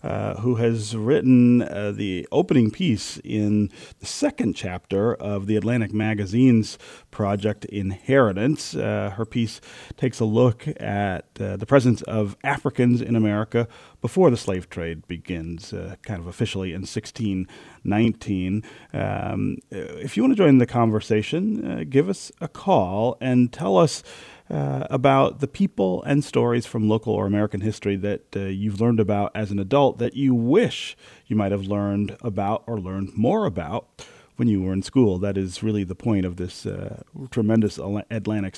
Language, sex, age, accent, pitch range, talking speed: English, male, 40-59, American, 95-120 Hz, 165 wpm